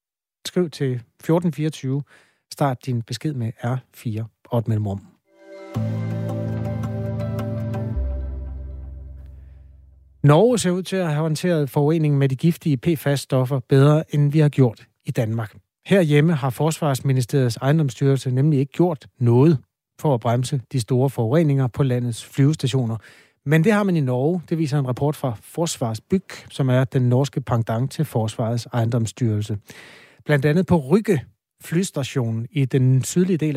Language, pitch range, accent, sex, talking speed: Danish, 120-155 Hz, native, male, 135 wpm